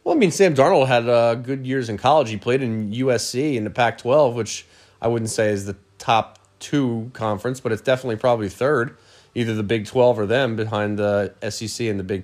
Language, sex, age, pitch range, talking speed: English, male, 30-49, 115-160 Hz, 215 wpm